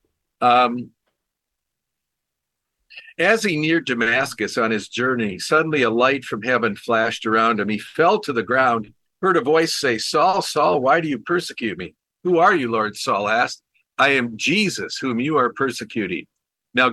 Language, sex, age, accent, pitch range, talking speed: English, male, 50-69, American, 115-145 Hz, 165 wpm